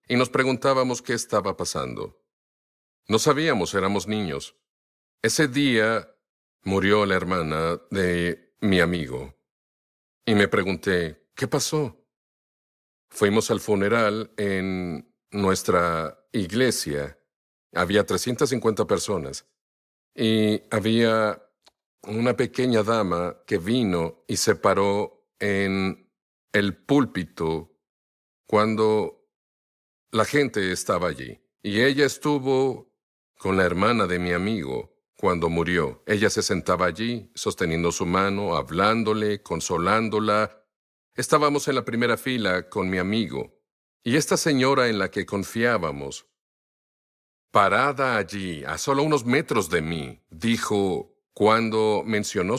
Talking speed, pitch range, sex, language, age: 110 wpm, 90-120 Hz, male, English, 50-69